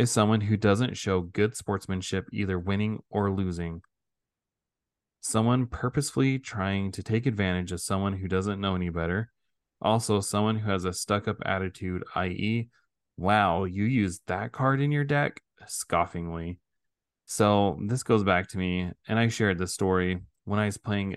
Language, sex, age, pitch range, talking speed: English, male, 20-39, 95-115 Hz, 160 wpm